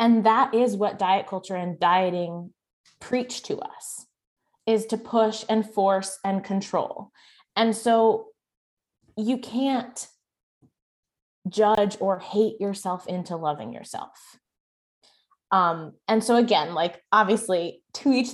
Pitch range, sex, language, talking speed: 195-250 Hz, female, English, 120 wpm